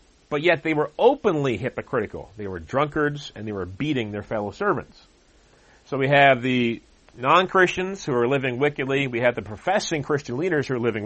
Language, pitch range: English, 120-165 Hz